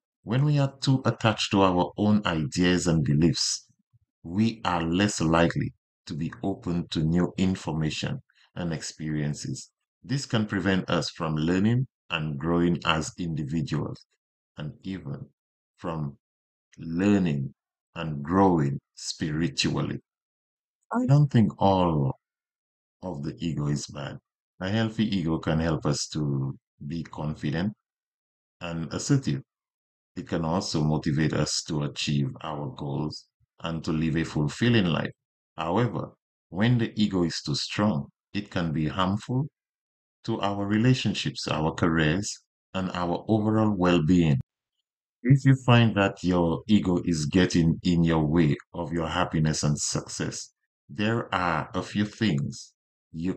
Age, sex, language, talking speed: 50-69, male, English, 130 wpm